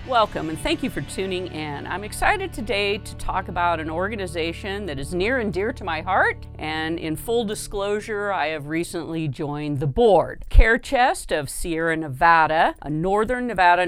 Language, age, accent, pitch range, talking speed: English, 50-69, American, 155-210 Hz, 175 wpm